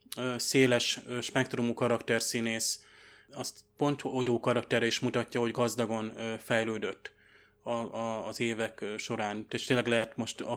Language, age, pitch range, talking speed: Hungarian, 20-39, 115-130 Hz, 130 wpm